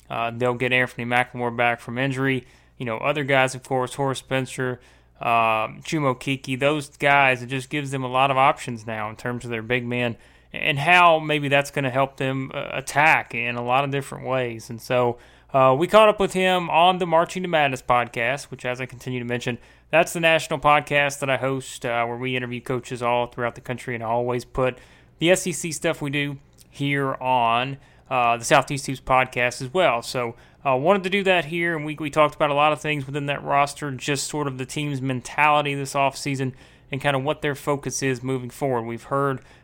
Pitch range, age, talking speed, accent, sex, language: 120-145 Hz, 30-49, 215 wpm, American, male, English